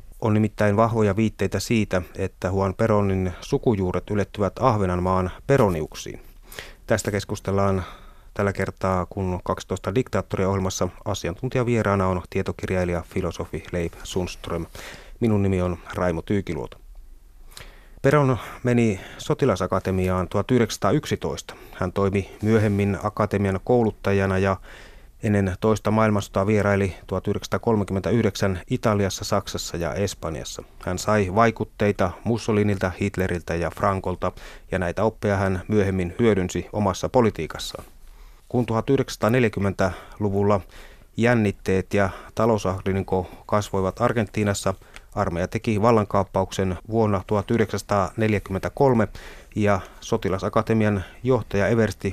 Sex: male